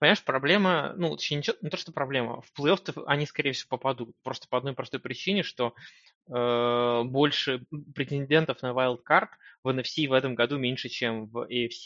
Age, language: 20-39, Russian